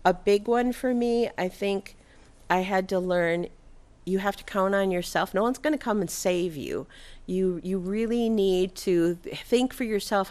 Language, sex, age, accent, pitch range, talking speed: English, female, 50-69, American, 150-205 Hz, 190 wpm